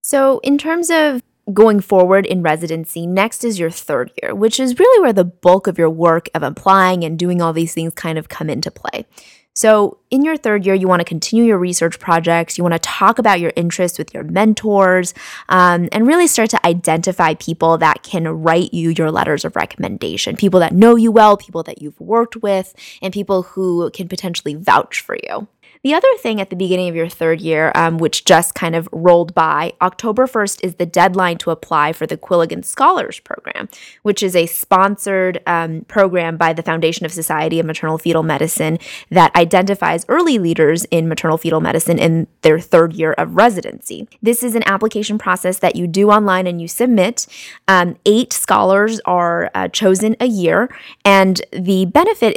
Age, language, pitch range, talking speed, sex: 20-39, English, 165-210 Hz, 195 wpm, female